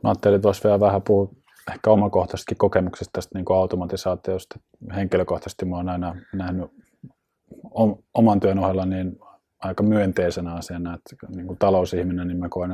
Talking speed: 150 wpm